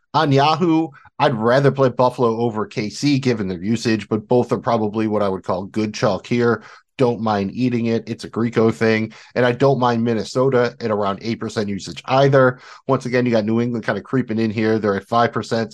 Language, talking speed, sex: English, 215 wpm, male